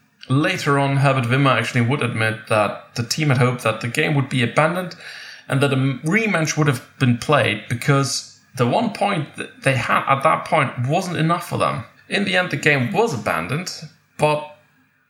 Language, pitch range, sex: English, 125-160 Hz, male